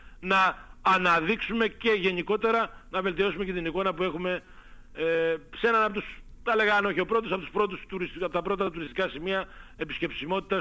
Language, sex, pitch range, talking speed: Greek, male, 140-190 Hz, 165 wpm